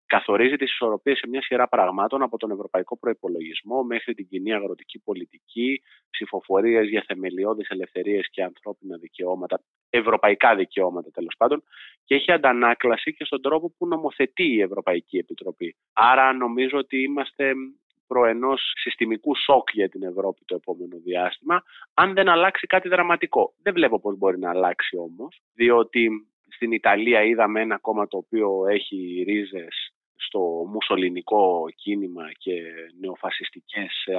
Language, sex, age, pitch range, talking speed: Greek, male, 30-49, 95-135 Hz, 135 wpm